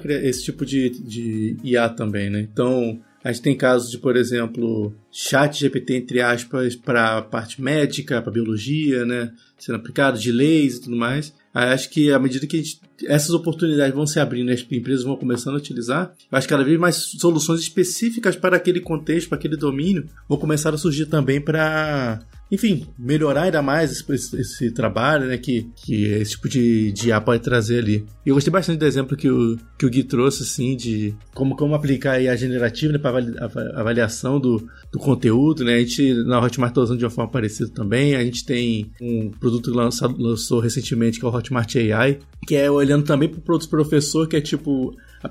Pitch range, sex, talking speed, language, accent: 120-150 Hz, male, 200 wpm, Portuguese, Brazilian